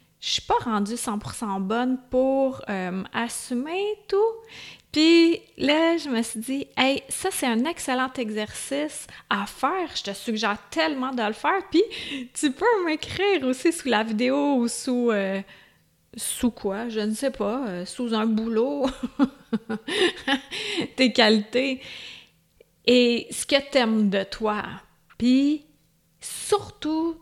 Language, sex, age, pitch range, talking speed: French, female, 30-49, 215-275 Hz, 140 wpm